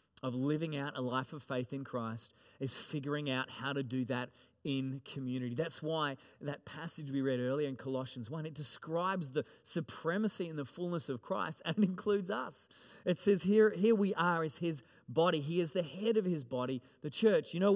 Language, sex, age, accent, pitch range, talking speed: English, male, 30-49, Australian, 140-175 Hz, 205 wpm